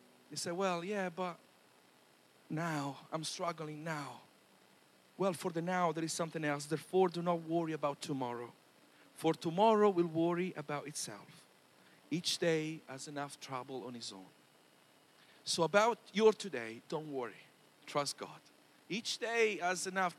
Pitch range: 145-180 Hz